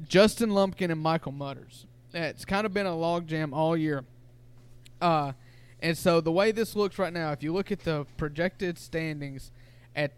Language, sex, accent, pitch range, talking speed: English, male, American, 130-175 Hz, 185 wpm